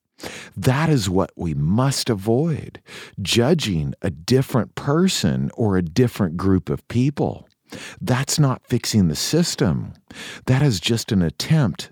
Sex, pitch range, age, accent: male, 95-150 Hz, 50-69, American